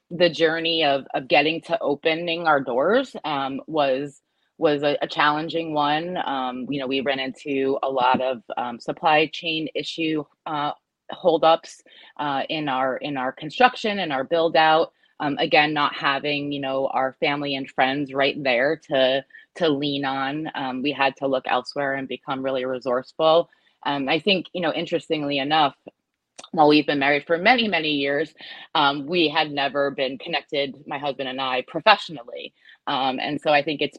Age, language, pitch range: 20-39, English, 135-160 Hz